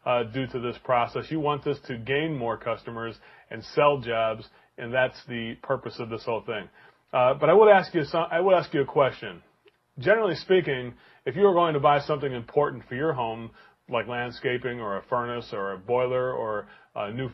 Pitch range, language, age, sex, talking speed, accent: 125-165 Hz, English, 30-49, male, 210 wpm, American